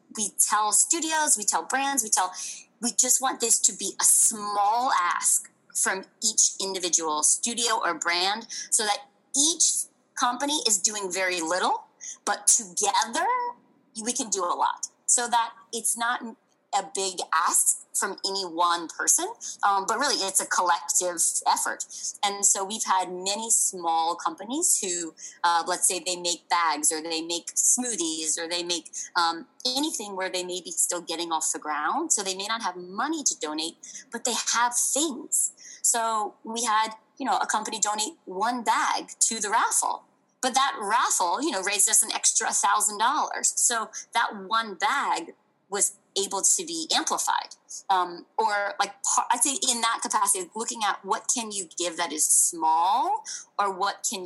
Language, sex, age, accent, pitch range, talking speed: English, female, 20-39, American, 180-260 Hz, 170 wpm